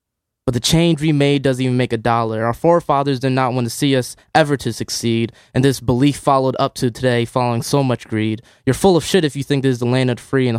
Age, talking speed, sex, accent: 20-39, 265 wpm, male, American